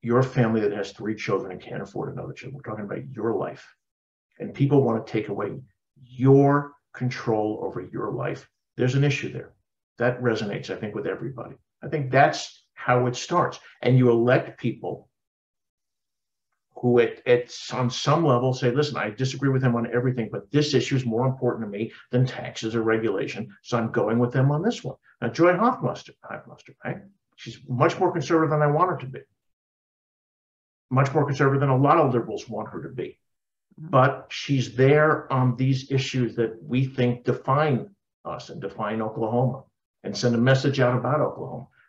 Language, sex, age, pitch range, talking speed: English, male, 50-69, 120-140 Hz, 185 wpm